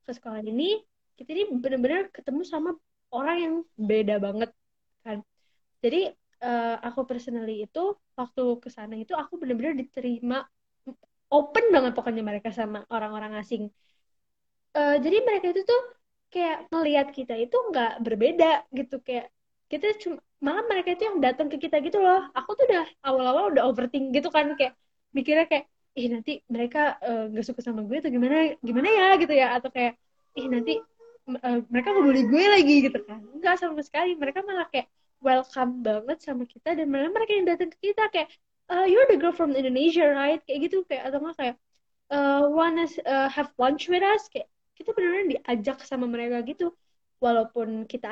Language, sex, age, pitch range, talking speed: Indonesian, female, 20-39, 240-330 Hz, 175 wpm